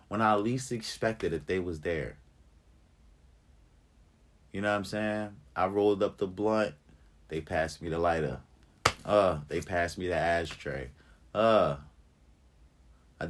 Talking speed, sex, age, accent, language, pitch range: 140 wpm, male, 30-49, American, English, 75-105 Hz